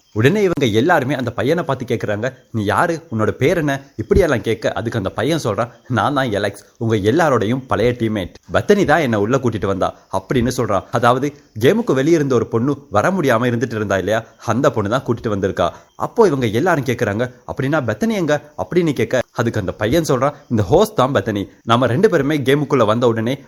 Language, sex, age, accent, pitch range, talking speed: Tamil, male, 30-49, native, 110-140 Hz, 110 wpm